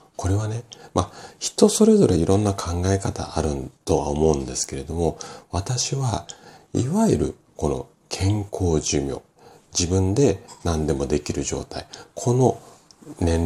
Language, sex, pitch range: Japanese, male, 75-110 Hz